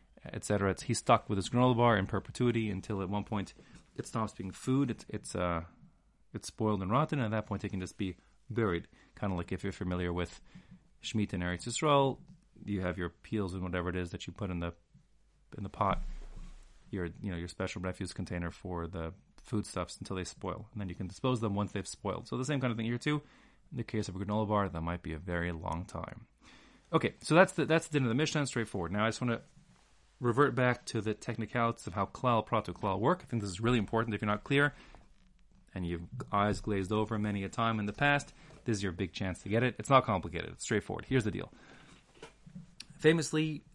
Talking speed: 235 wpm